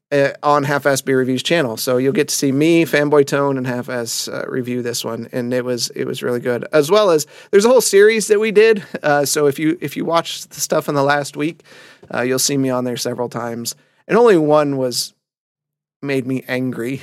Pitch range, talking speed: 125-155 Hz, 235 wpm